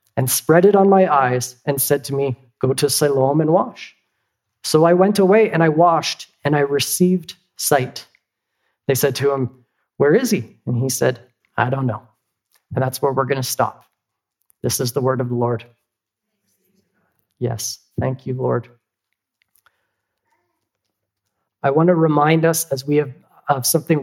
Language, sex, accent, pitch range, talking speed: English, male, American, 130-160 Hz, 160 wpm